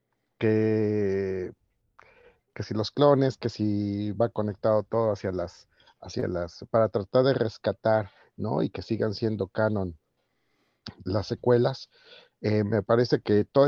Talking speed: 135 wpm